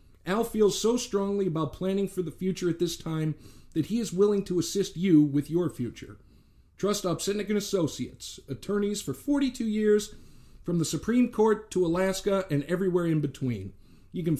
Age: 50-69